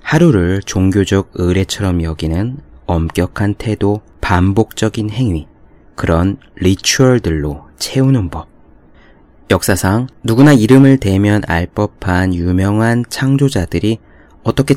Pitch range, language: 90-115 Hz, Korean